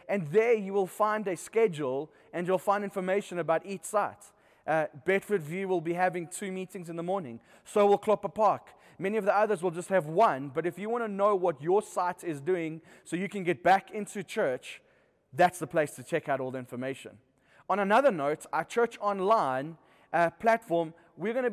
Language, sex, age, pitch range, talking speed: English, male, 20-39, 150-190 Hz, 210 wpm